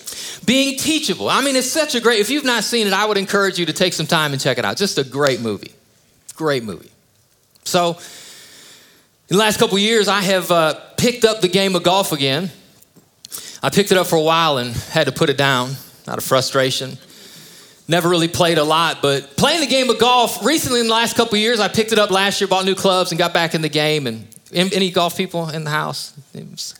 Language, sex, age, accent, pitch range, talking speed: English, male, 30-49, American, 175-235 Hz, 235 wpm